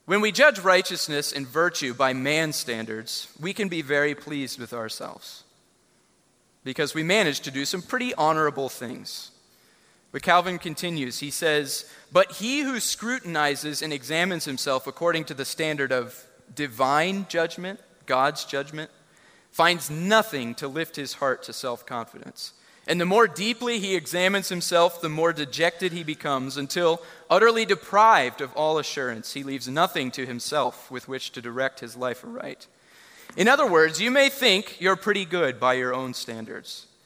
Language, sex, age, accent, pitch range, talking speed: English, male, 30-49, American, 135-190 Hz, 155 wpm